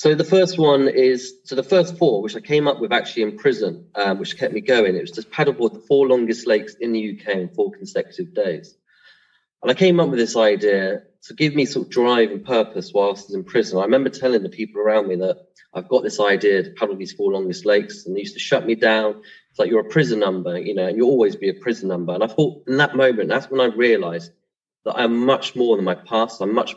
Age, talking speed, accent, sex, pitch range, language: 30-49, 260 wpm, British, male, 110-165 Hz, English